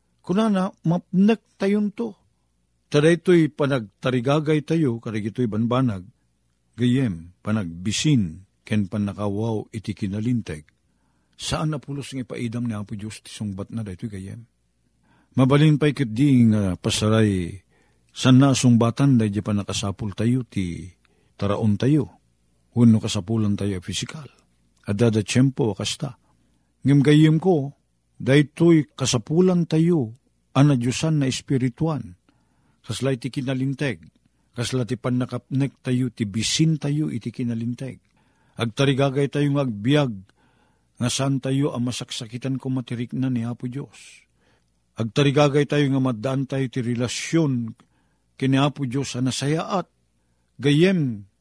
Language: Filipino